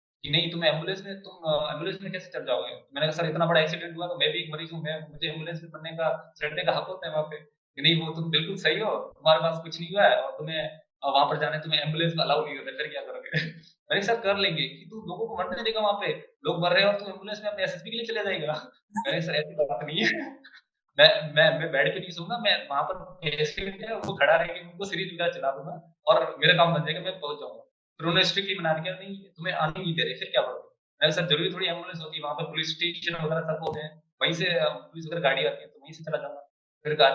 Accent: native